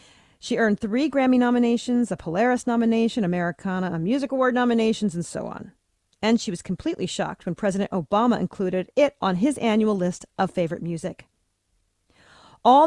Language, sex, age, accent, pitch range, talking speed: English, female, 40-59, American, 175-225 Hz, 160 wpm